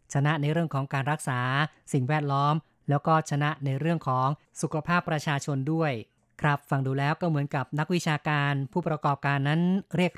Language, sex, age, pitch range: Thai, female, 20-39, 135-160 Hz